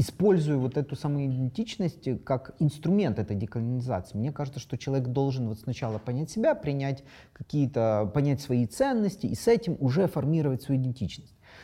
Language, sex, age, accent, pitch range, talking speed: Russian, male, 30-49, native, 120-150 Hz, 145 wpm